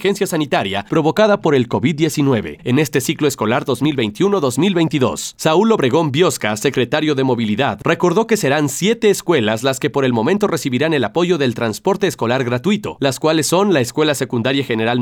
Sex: male